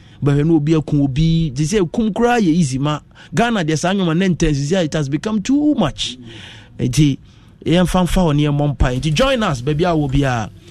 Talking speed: 190 wpm